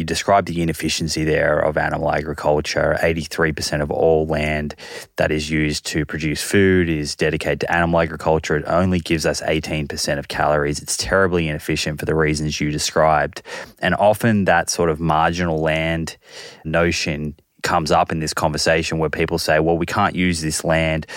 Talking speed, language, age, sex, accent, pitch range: 170 wpm, English, 20-39, male, Australian, 80-90 Hz